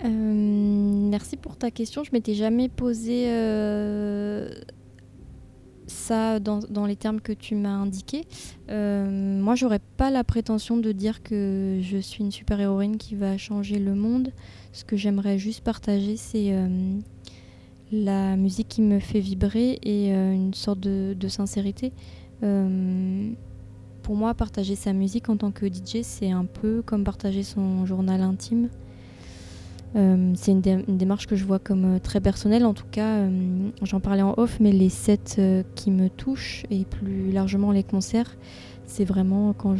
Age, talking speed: 20-39, 170 wpm